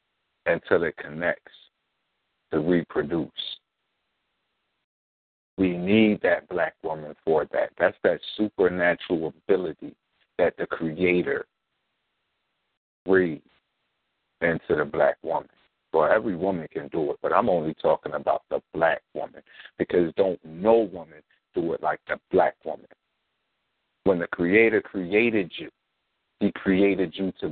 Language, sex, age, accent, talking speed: English, male, 50-69, American, 125 wpm